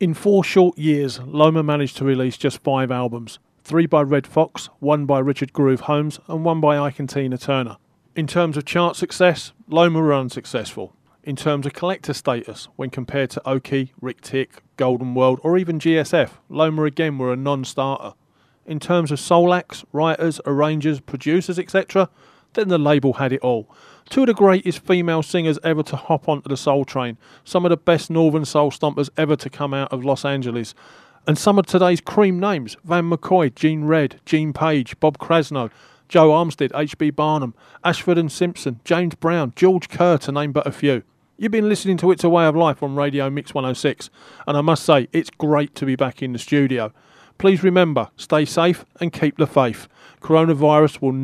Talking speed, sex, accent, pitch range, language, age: 190 wpm, male, British, 135-170 Hz, English, 40-59